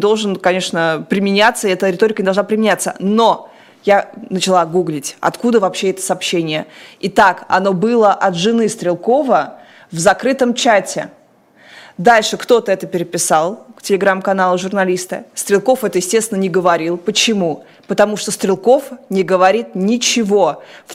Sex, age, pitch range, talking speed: female, 20-39, 185-230 Hz, 130 wpm